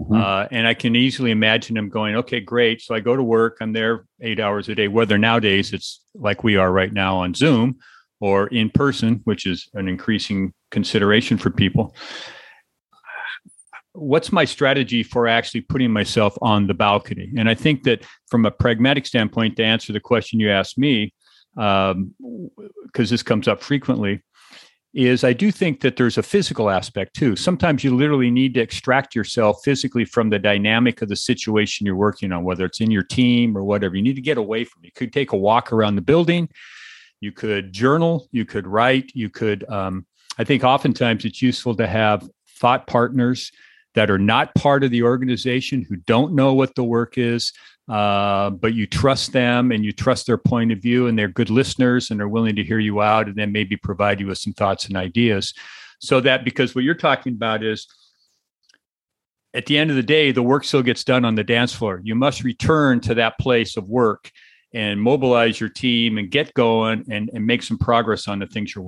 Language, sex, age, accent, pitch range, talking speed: English, male, 50-69, American, 105-125 Hz, 205 wpm